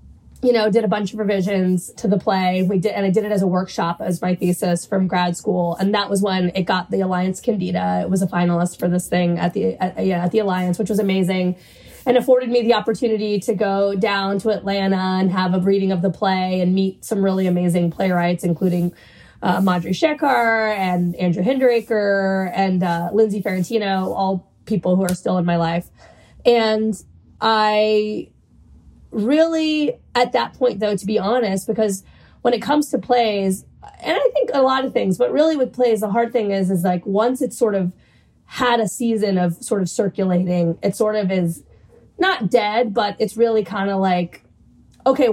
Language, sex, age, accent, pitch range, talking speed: English, female, 20-39, American, 185-235 Hz, 195 wpm